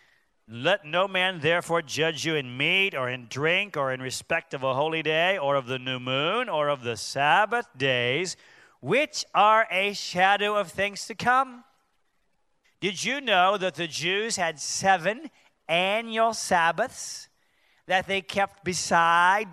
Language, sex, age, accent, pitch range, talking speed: English, male, 40-59, American, 135-195 Hz, 155 wpm